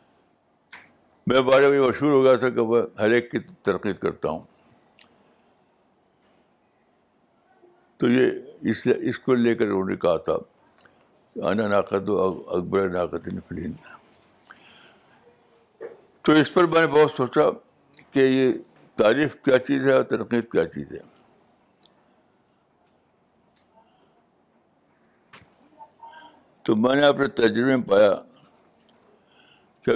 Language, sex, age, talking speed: Urdu, male, 60-79, 110 wpm